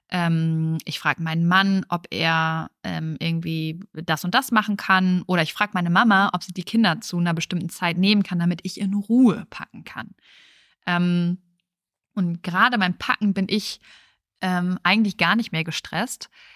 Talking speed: 175 wpm